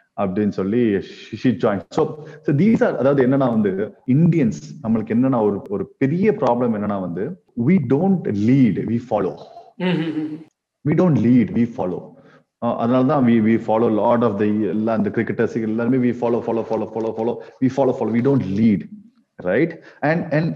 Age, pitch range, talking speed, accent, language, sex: 30-49, 125-190 Hz, 30 wpm, native, Tamil, male